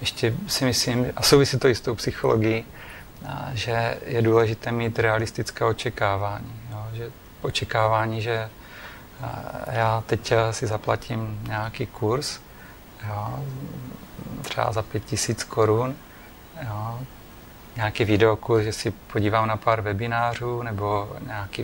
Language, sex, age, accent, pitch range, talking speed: Czech, male, 40-59, native, 110-120 Hz, 115 wpm